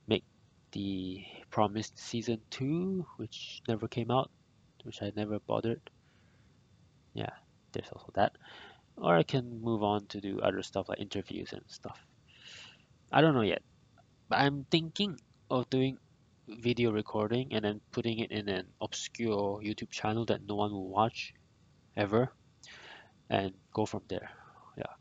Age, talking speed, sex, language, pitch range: 20-39, 145 wpm, male, English, 105-125 Hz